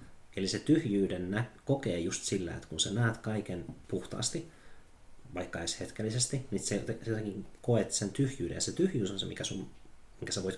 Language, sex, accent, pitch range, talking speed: Finnish, male, native, 95-120 Hz, 170 wpm